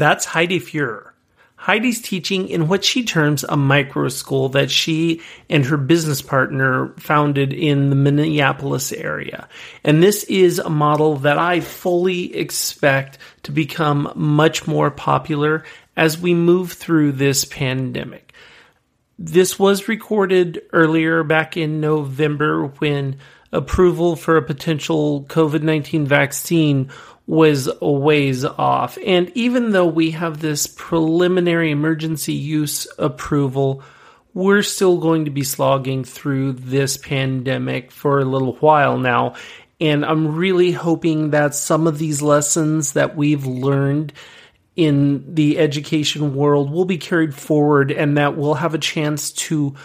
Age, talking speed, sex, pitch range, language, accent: 40-59, 135 wpm, male, 145-165 Hz, English, American